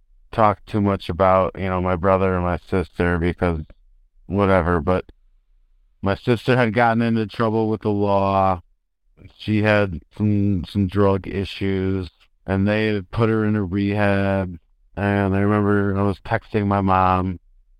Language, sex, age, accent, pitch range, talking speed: English, male, 50-69, American, 90-105 Hz, 150 wpm